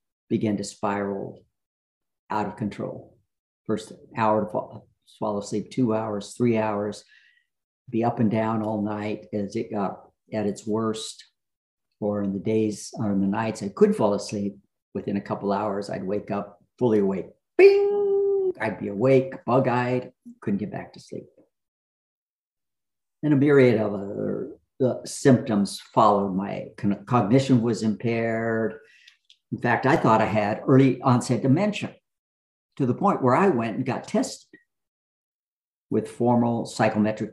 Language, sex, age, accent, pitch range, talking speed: English, male, 50-69, American, 105-125 Hz, 150 wpm